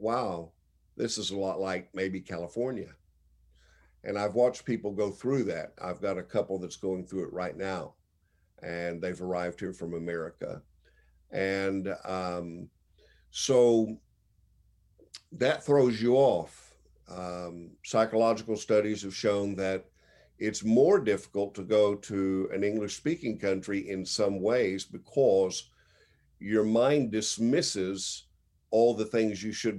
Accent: American